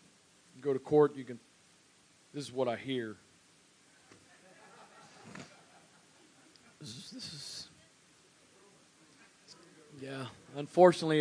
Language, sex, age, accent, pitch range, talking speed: English, male, 40-59, American, 150-185 Hz, 85 wpm